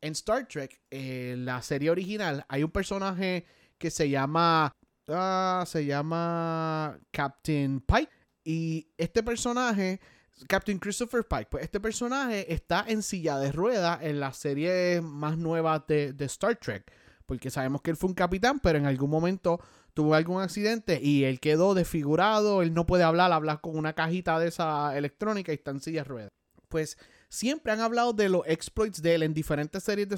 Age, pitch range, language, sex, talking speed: 30-49, 150-195 Hz, English, male, 175 wpm